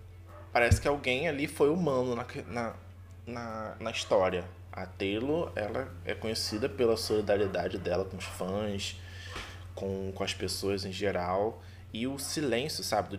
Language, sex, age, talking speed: Portuguese, male, 20-39, 140 wpm